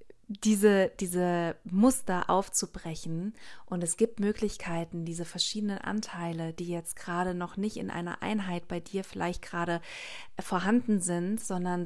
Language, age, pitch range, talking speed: German, 30-49, 175-205 Hz, 130 wpm